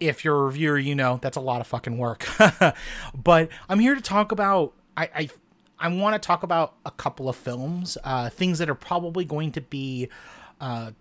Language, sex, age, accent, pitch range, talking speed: English, male, 30-49, American, 130-165 Hz, 205 wpm